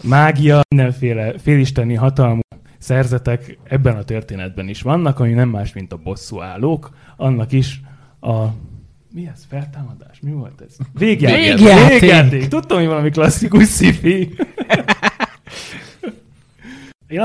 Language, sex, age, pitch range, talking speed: Hungarian, male, 30-49, 115-150 Hz, 115 wpm